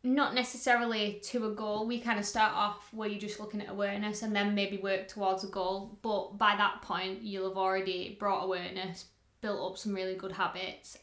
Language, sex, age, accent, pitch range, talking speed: English, female, 20-39, British, 195-225 Hz, 205 wpm